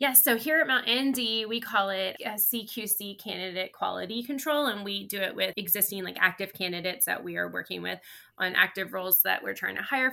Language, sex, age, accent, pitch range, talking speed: English, female, 20-39, American, 195-240 Hz, 220 wpm